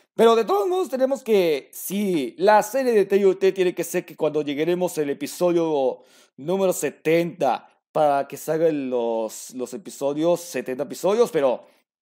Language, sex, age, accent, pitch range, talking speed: Spanish, male, 40-59, Mexican, 150-215 Hz, 150 wpm